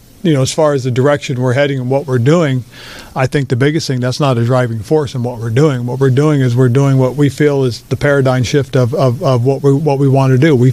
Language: English